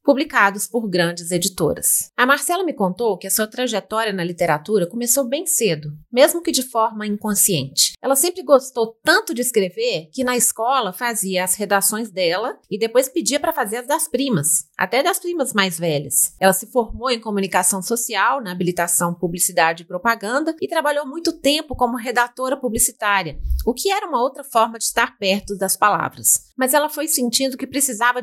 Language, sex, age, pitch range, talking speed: Portuguese, female, 30-49, 195-275 Hz, 175 wpm